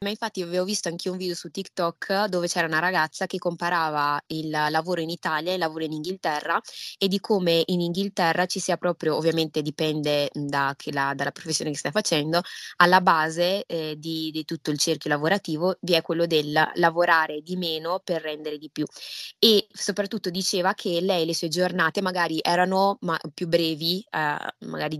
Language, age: Italian, 20-39